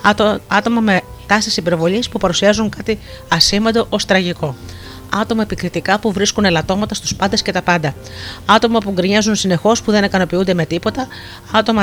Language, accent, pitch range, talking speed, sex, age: Greek, native, 160-215 Hz, 150 wpm, female, 40-59